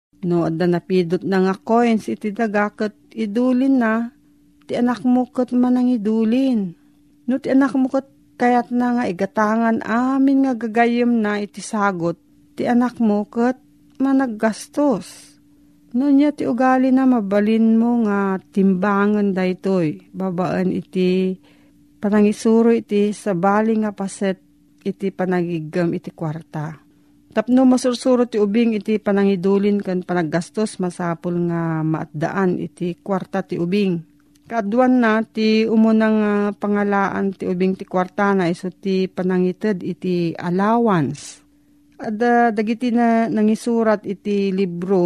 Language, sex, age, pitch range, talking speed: Filipino, female, 40-59, 180-230 Hz, 120 wpm